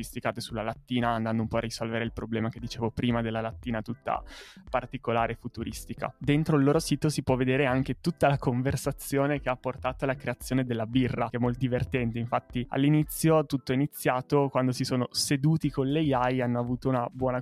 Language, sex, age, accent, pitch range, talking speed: Italian, male, 20-39, native, 120-140 Hz, 195 wpm